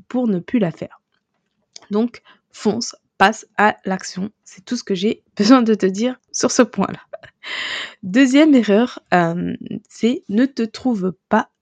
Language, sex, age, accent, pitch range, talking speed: French, female, 20-39, French, 190-230 Hz, 155 wpm